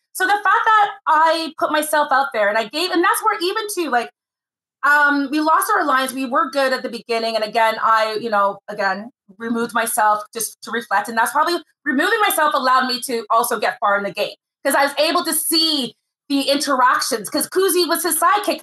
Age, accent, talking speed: 30-49, American, 215 wpm